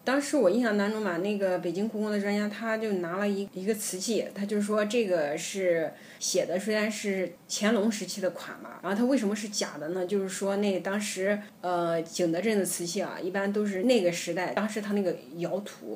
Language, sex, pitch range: Chinese, female, 180-225 Hz